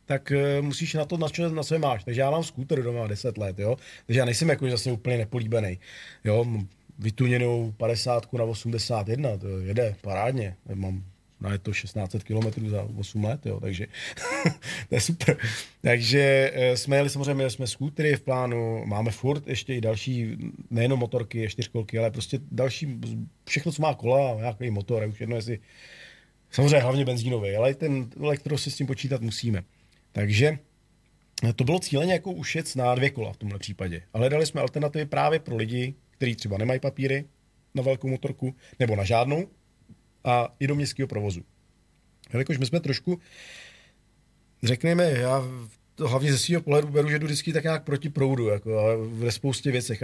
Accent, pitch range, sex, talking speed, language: native, 115-145 Hz, male, 175 wpm, Czech